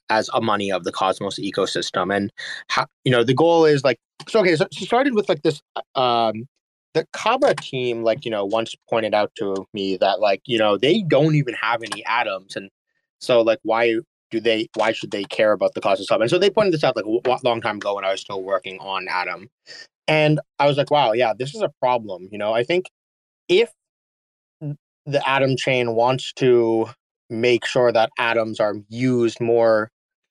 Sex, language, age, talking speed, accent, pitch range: male, English, 20-39, 205 wpm, American, 115-145 Hz